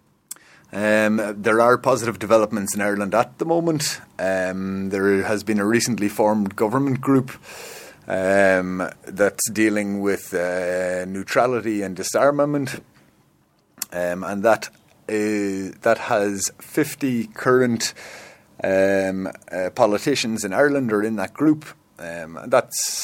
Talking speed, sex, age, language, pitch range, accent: 120 wpm, male, 30-49, English, 95-115 Hz, Irish